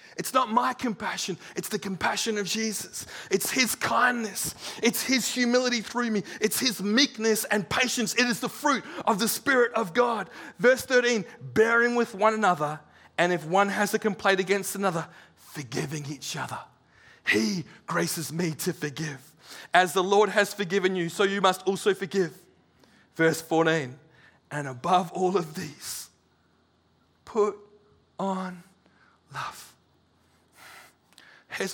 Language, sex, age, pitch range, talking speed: English, male, 30-49, 165-215 Hz, 140 wpm